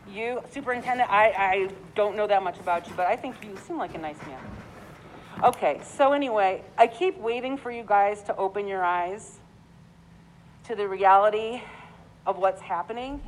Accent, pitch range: American, 205-260 Hz